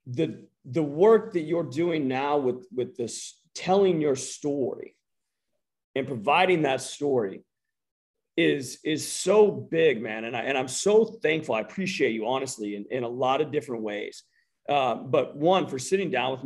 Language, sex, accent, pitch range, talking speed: English, male, American, 130-195 Hz, 170 wpm